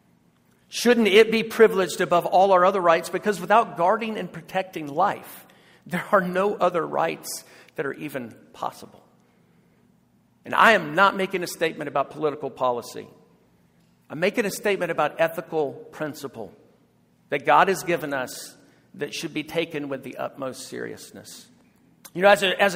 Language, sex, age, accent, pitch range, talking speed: English, male, 50-69, American, 155-200 Hz, 155 wpm